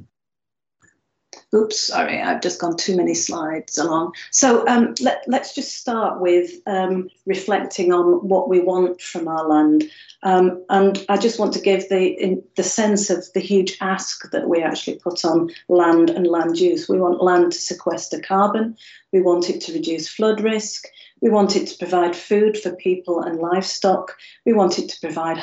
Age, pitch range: 40-59, 175-200 Hz